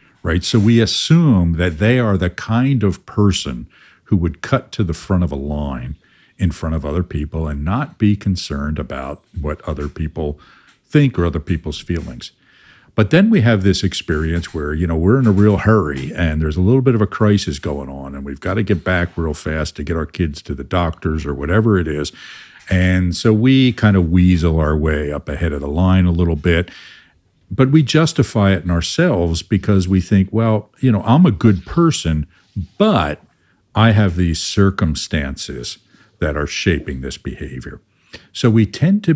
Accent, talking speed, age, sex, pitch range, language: American, 195 wpm, 50-69, male, 80-105 Hz, English